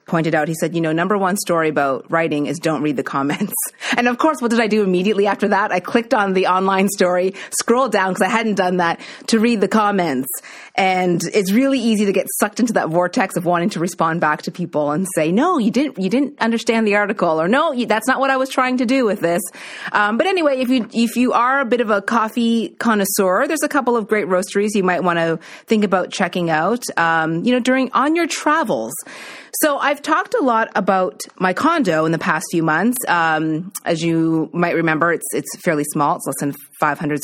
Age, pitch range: 30-49, 165-235 Hz